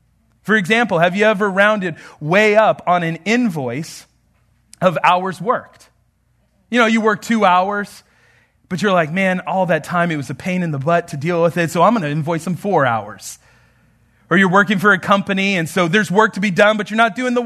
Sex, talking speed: male, 220 wpm